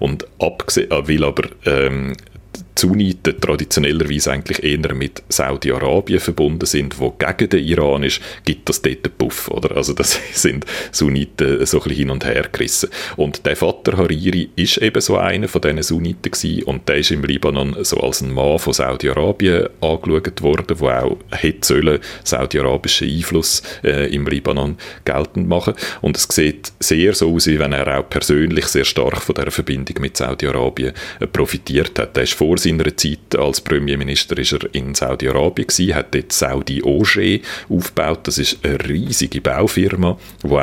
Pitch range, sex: 70-80 Hz, male